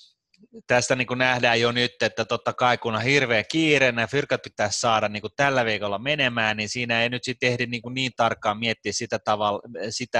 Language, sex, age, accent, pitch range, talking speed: Finnish, male, 30-49, native, 105-125 Hz, 190 wpm